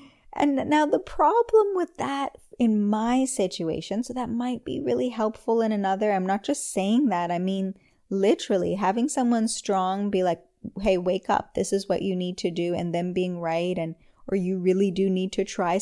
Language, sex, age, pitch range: English, female, 10-29, 185-230 Hz